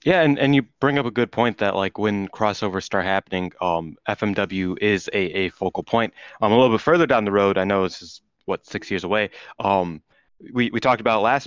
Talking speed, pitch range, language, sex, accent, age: 240 wpm, 95-110 Hz, English, male, American, 20-39